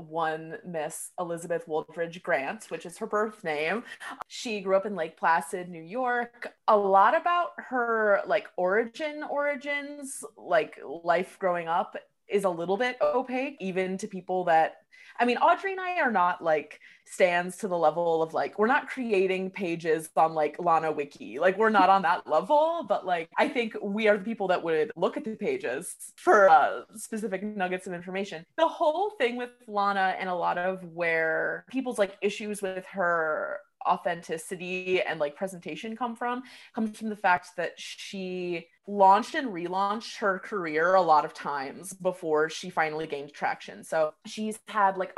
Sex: female